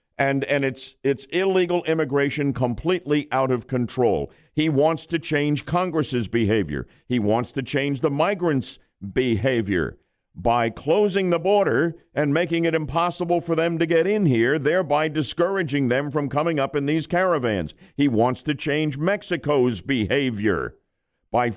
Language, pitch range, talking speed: English, 130-170 Hz, 145 wpm